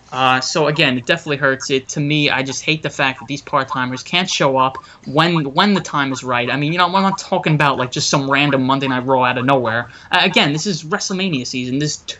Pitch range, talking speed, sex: 130-155 Hz, 255 wpm, male